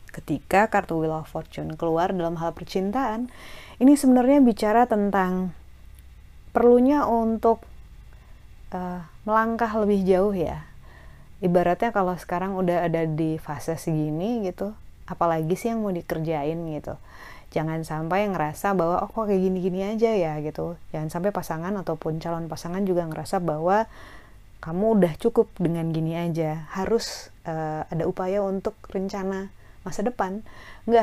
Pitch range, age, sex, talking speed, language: 150-205 Hz, 30-49, female, 135 wpm, Indonesian